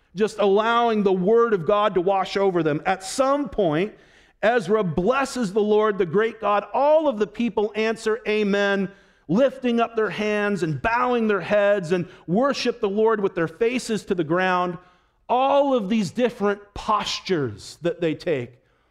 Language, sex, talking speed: English, male, 165 wpm